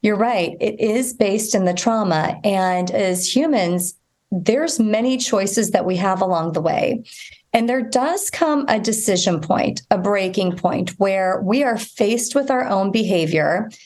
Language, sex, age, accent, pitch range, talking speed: English, female, 30-49, American, 185-235 Hz, 165 wpm